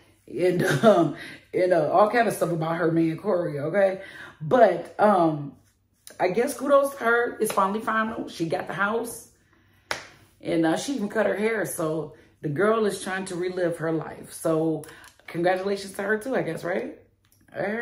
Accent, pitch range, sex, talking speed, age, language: American, 160-215 Hz, female, 180 wpm, 30-49, English